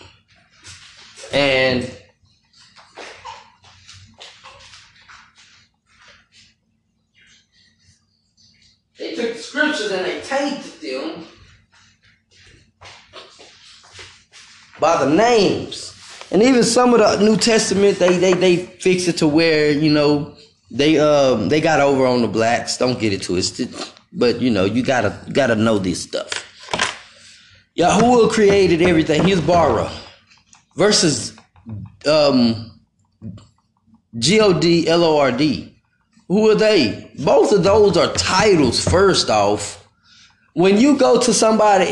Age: 30-49